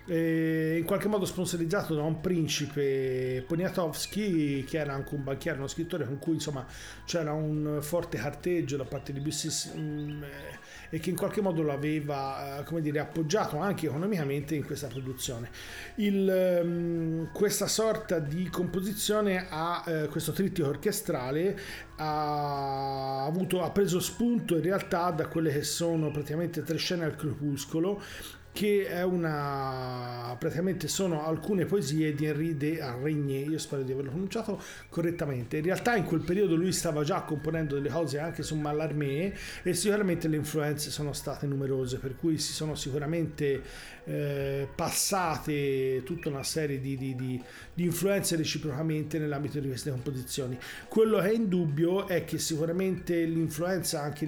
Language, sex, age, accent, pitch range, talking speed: Italian, male, 40-59, native, 145-175 Hz, 145 wpm